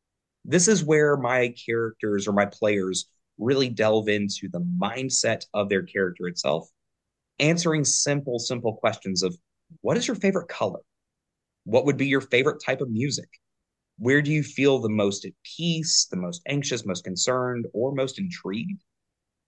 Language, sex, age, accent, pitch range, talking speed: English, male, 30-49, American, 105-160 Hz, 155 wpm